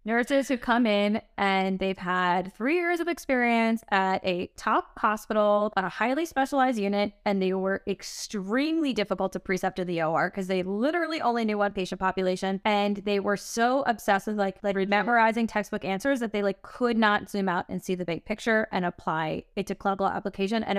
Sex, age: female, 20-39